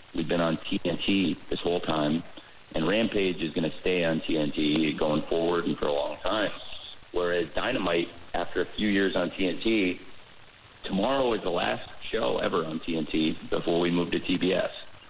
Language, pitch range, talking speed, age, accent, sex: English, 80-95 Hz, 165 wpm, 40-59, American, male